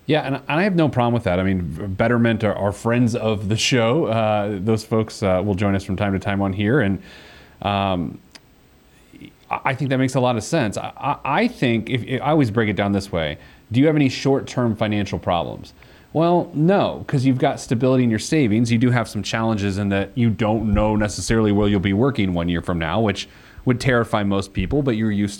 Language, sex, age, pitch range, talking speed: English, male, 30-49, 100-130 Hz, 220 wpm